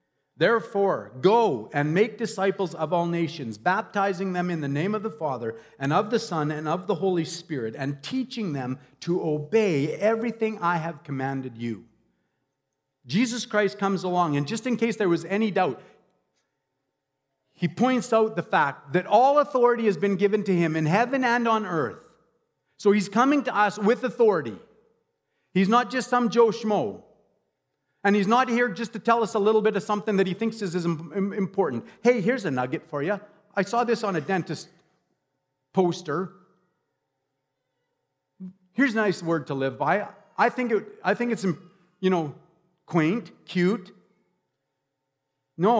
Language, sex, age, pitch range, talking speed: English, male, 50-69, 160-220 Hz, 165 wpm